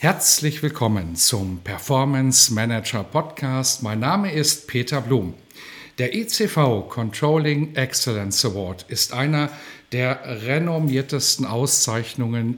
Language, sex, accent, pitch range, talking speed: German, male, German, 120-160 Hz, 100 wpm